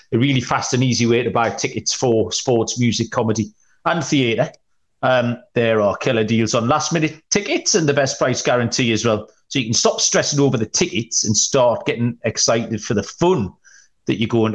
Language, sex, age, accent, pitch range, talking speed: English, male, 40-59, British, 115-150 Hz, 200 wpm